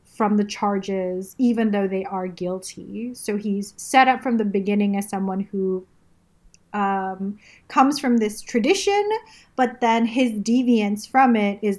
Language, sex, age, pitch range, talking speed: English, female, 30-49, 195-230 Hz, 155 wpm